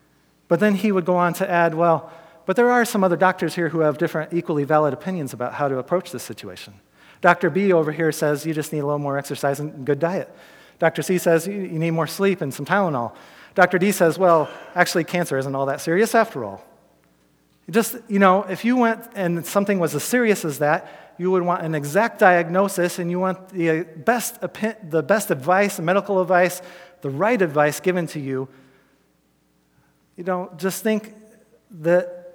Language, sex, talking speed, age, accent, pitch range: English, male, 195 wpm, 40-59, American, 145-185 Hz